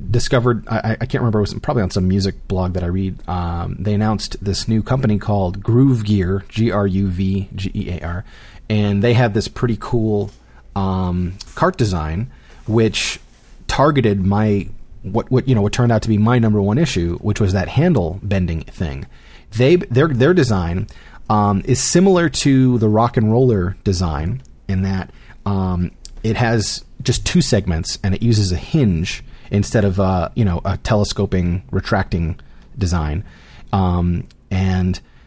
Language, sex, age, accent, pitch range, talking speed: English, male, 30-49, American, 95-115 Hz, 170 wpm